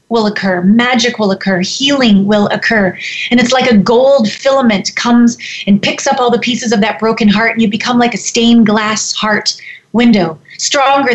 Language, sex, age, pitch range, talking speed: English, female, 30-49, 205-270 Hz, 190 wpm